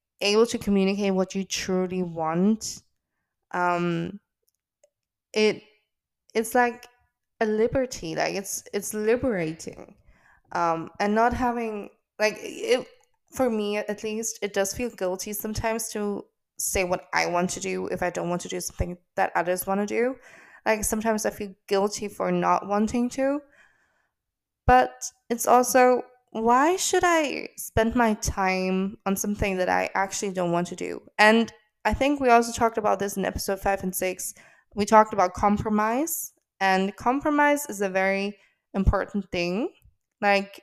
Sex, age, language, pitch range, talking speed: female, 20-39, English, 185-230 Hz, 150 wpm